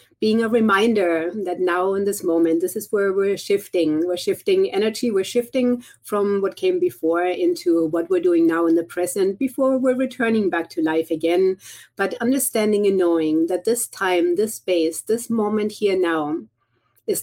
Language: English